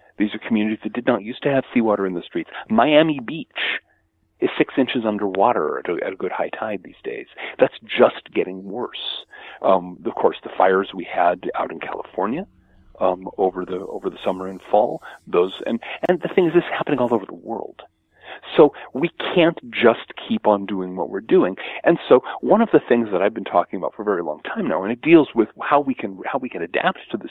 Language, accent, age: English, American, 40-59